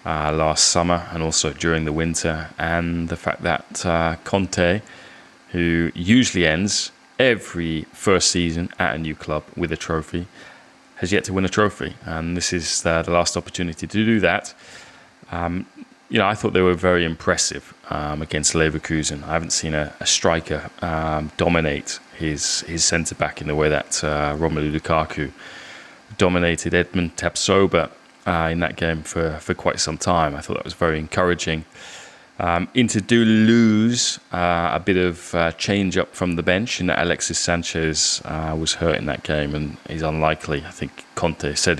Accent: British